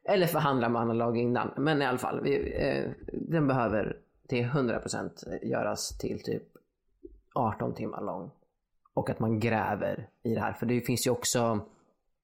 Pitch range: 105-120 Hz